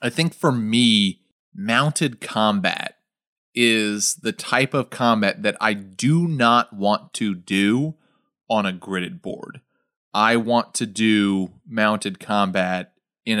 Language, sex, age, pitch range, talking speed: English, male, 30-49, 105-145 Hz, 130 wpm